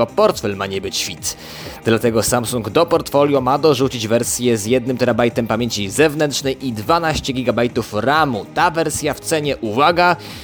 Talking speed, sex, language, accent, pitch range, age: 140 wpm, male, Polish, native, 115-140 Hz, 20-39